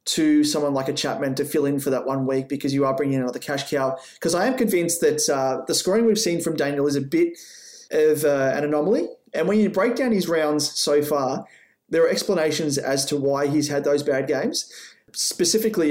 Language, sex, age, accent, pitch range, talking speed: English, male, 30-49, Australian, 140-175 Hz, 225 wpm